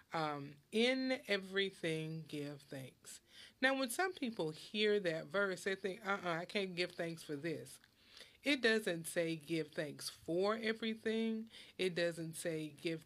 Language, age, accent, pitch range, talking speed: English, 30-49, American, 155-215 Hz, 150 wpm